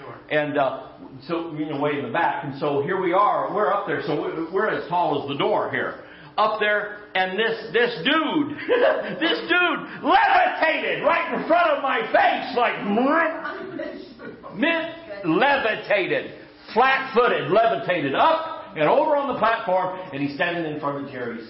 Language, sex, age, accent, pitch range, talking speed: English, male, 50-69, American, 155-240 Hz, 165 wpm